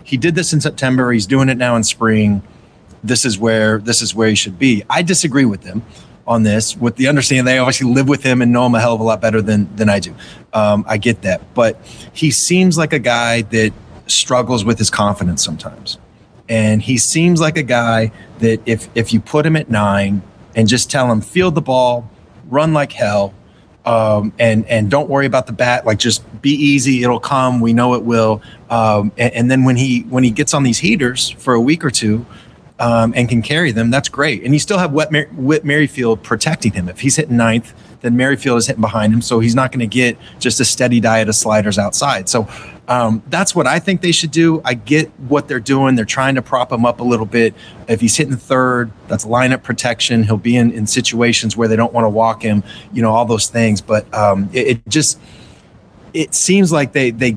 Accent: American